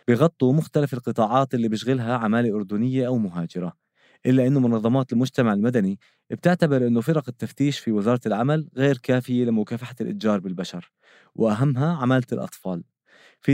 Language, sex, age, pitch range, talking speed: Arabic, male, 20-39, 110-140 Hz, 135 wpm